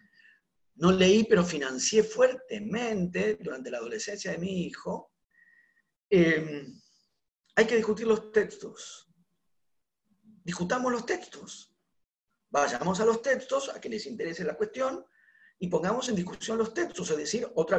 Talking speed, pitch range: 130 wpm, 180-280 Hz